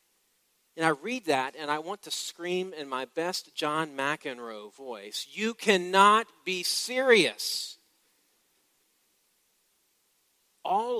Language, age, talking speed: English, 40-59, 110 wpm